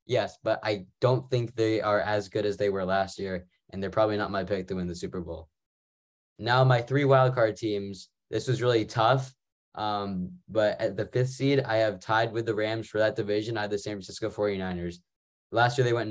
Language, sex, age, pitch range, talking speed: English, male, 10-29, 100-120 Hz, 220 wpm